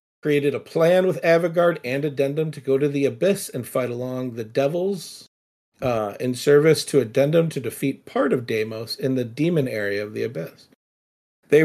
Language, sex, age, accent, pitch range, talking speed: English, male, 50-69, American, 130-165 Hz, 180 wpm